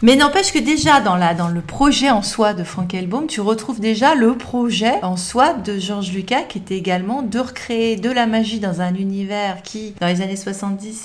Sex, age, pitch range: female, 30-49, 185-245 Hz